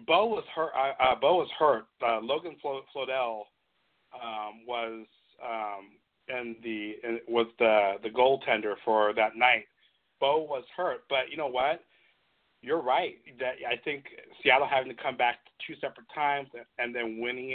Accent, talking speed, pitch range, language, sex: American, 165 wpm, 110-125 Hz, English, male